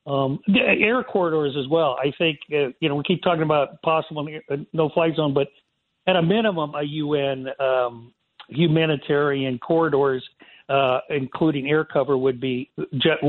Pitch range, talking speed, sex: 140-165 Hz, 155 wpm, male